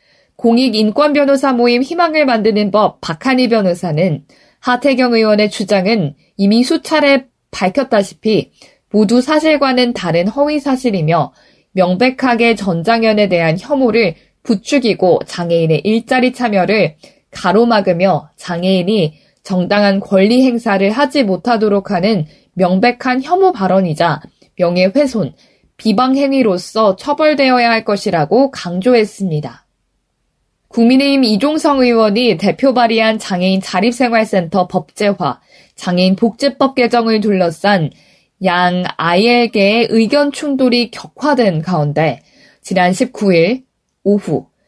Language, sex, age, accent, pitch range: Korean, female, 20-39, native, 185-250 Hz